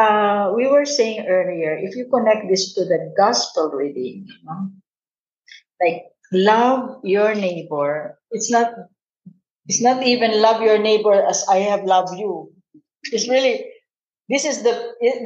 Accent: Filipino